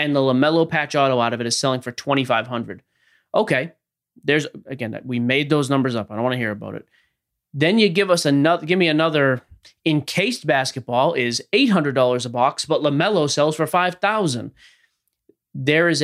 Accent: American